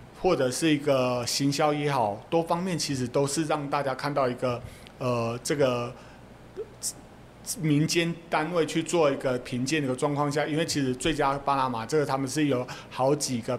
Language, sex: Chinese, male